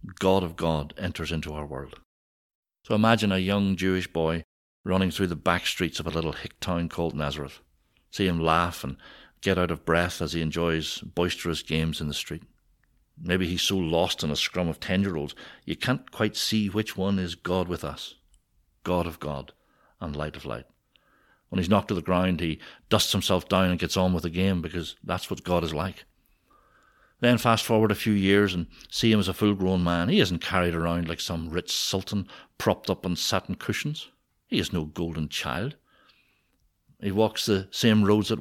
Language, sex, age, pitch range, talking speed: English, male, 60-79, 85-105 Hz, 195 wpm